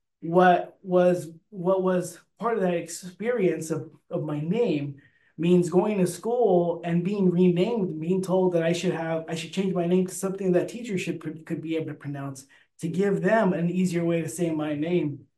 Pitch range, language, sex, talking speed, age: 165-190 Hz, English, male, 195 wpm, 20-39